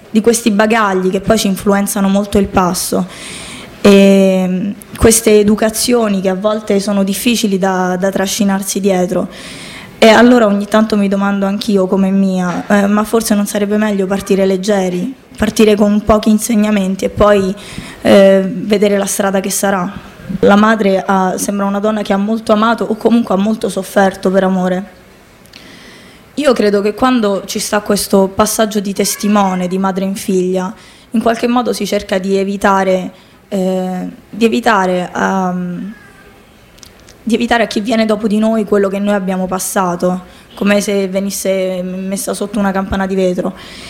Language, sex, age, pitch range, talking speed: Italian, female, 20-39, 195-215 Hz, 155 wpm